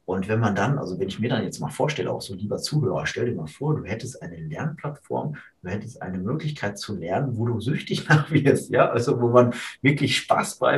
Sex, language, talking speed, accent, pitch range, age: male, German, 235 wpm, German, 105-130 Hz, 30-49